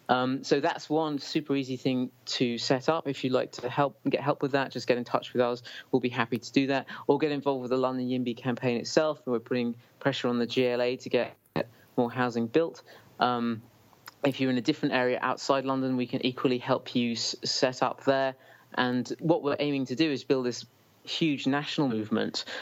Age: 30-49